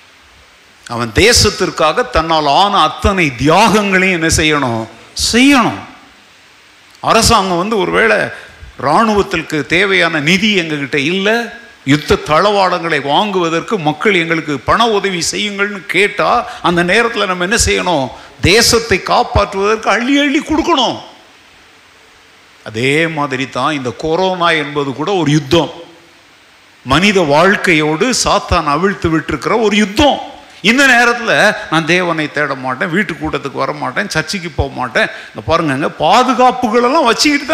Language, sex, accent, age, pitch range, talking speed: Tamil, male, native, 50-69, 150-210 Hz, 105 wpm